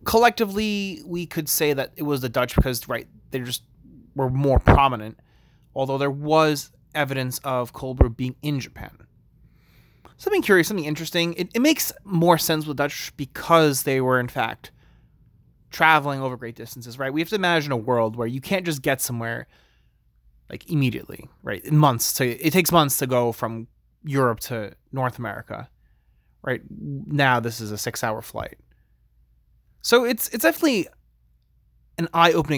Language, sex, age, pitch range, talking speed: English, male, 30-49, 110-155 Hz, 160 wpm